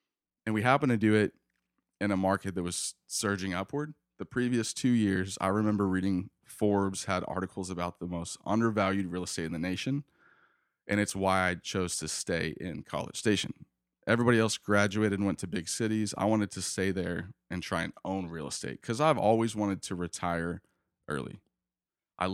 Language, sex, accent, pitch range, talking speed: English, male, American, 90-110 Hz, 185 wpm